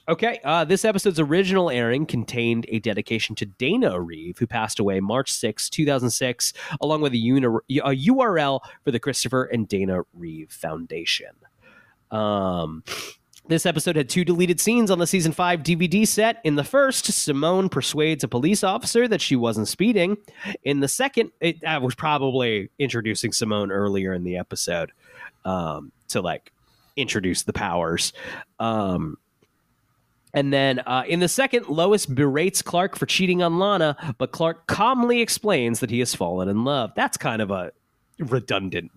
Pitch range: 115-180 Hz